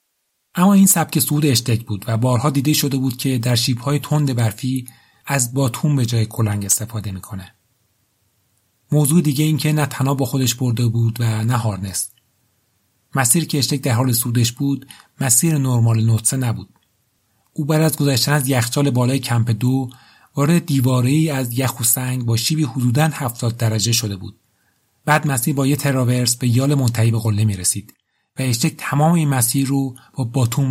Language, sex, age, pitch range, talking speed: Persian, male, 40-59, 115-140 Hz, 170 wpm